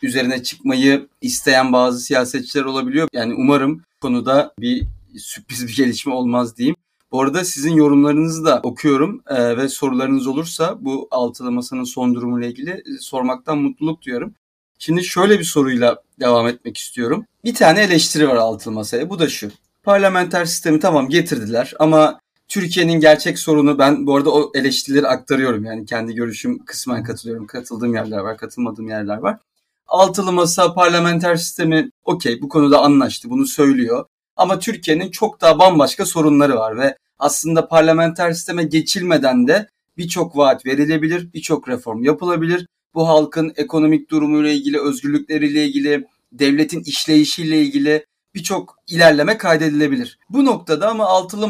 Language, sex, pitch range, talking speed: Turkish, male, 135-180 Hz, 140 wpm